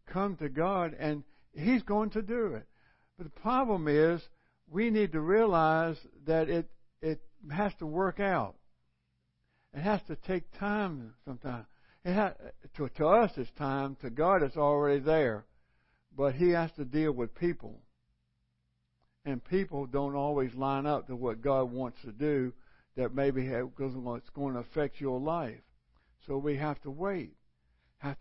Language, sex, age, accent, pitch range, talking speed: English, male, 60-79, American, 120-160 Hz, 160 wpm